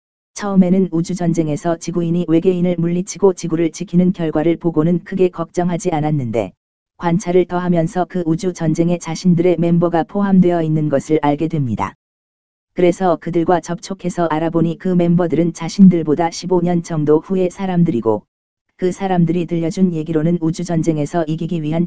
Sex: female